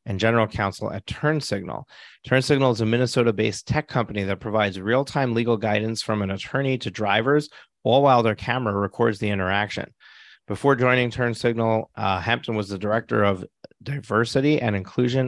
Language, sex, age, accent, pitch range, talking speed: English, male, 30-49, American, 100-120 Hz, 155 wpm